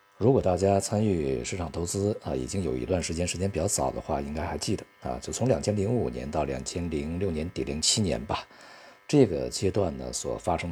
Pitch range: 75-100 Hz